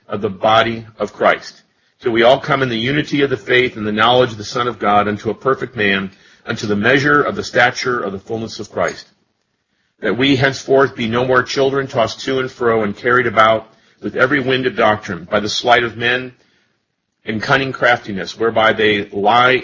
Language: English